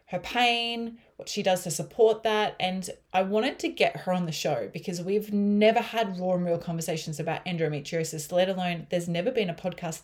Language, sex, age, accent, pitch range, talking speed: English, female, 20-39, Australian, 160-195 Hz, 205 wpm